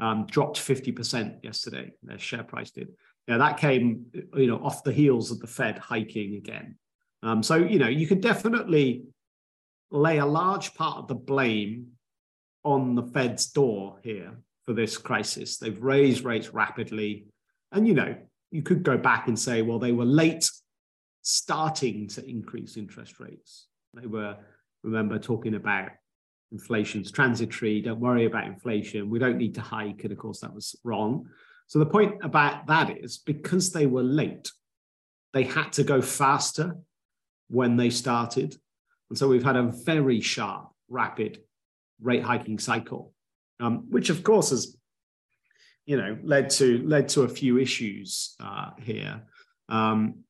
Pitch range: 110-145 Hz